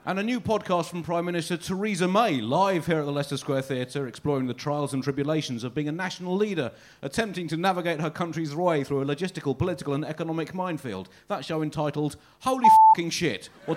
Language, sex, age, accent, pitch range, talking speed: English, male, 30-49, British, 140-180 Hz, 200 wpm